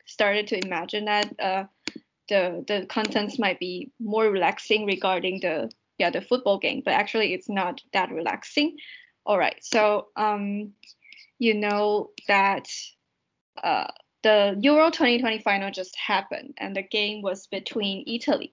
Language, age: English, 10-29